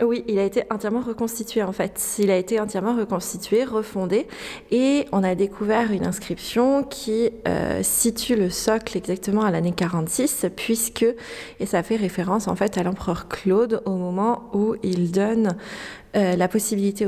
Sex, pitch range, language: female, 185-230 Hz, French